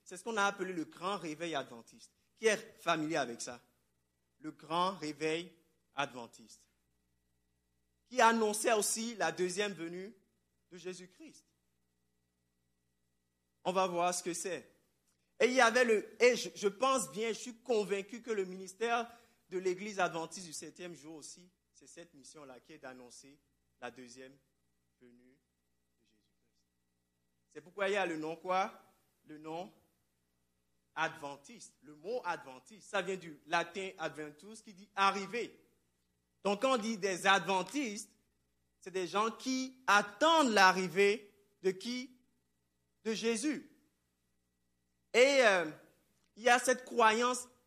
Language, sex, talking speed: French, male, 140 wpm